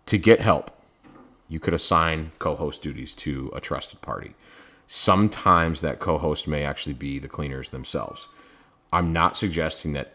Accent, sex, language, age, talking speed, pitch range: American, male, English, 30-49, 150 wpm, 70-80 Hz